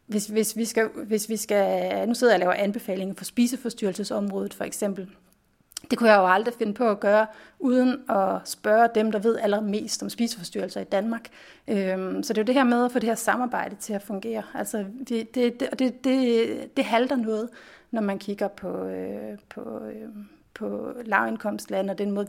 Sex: female